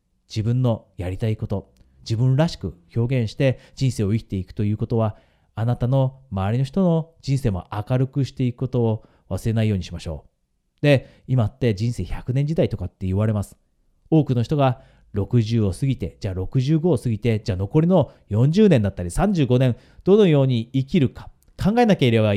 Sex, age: male, 30-49